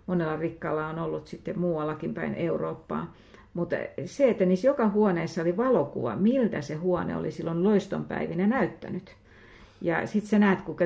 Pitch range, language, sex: 165-200 Hz, Finnish, female